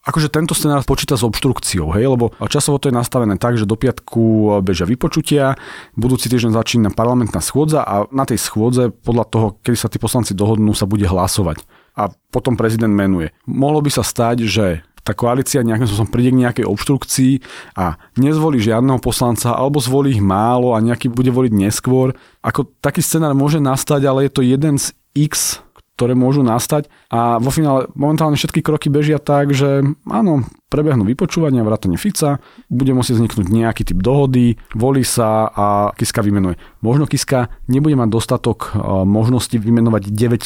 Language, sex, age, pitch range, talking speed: Slovak, male, 30-49, 110-140 Hz, 170 wpm